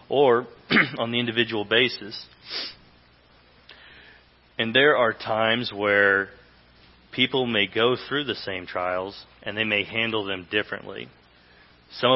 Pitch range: 105-125 Hz